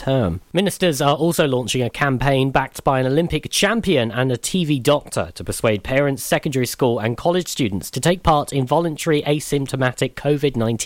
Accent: British